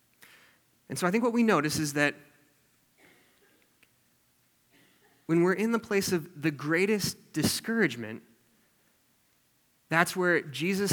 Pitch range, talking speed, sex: 135-195 Hz, 115 wpm, male